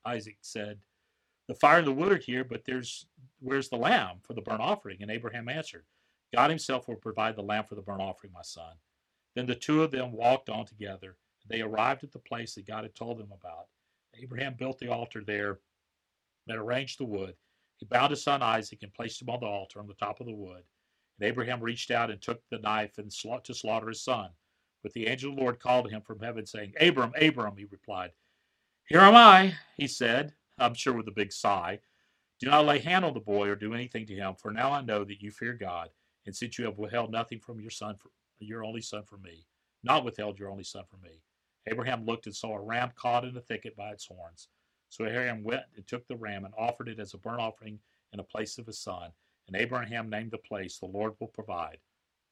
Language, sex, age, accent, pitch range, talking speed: English, male, 40-59, American, 100-125 Hz, 230 wpm